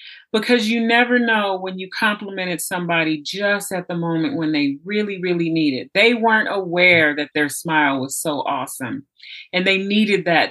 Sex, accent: female, American